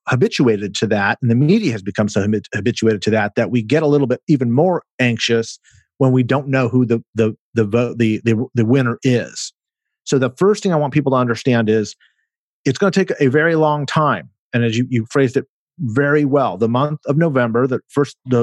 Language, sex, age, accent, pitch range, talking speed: English, male, 40-59, American, 115-140 Hz, 220 wpm